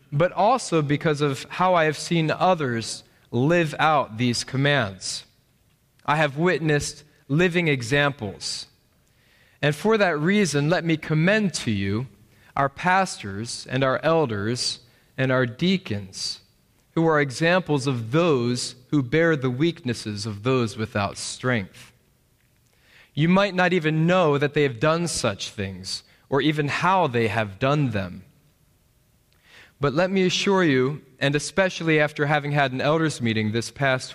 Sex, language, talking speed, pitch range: male, English, 140 wpm, 125-165 Hz